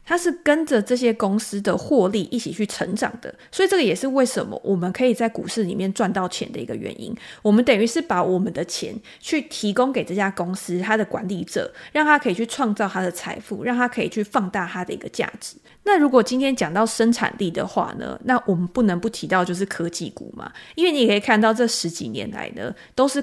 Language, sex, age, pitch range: Chinese, female, 20-39, 185-245 Hz